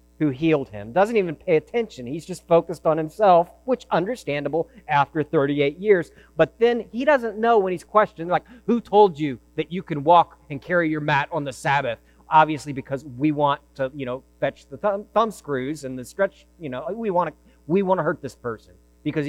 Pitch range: 135-195 Hz